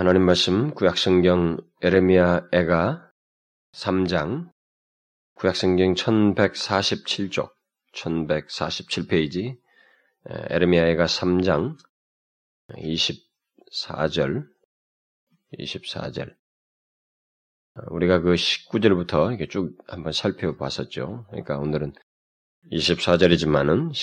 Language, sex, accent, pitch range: Korean, male, native, 75-90 Hz